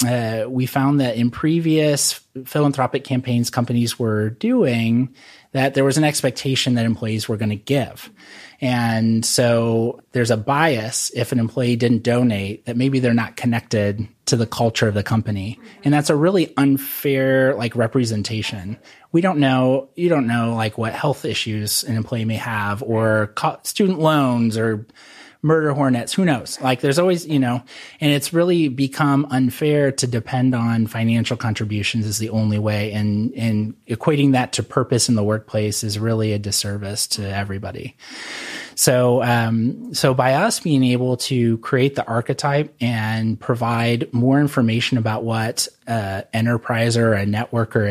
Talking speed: 165 wpm